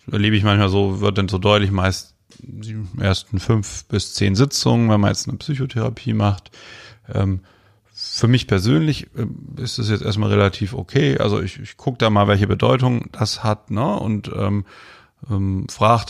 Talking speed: 170 wpm